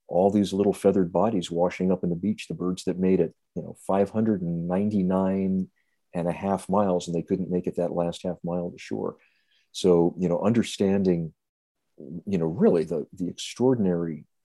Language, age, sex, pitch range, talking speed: English, 50-69, male, 85-100 Hz, 180 wpm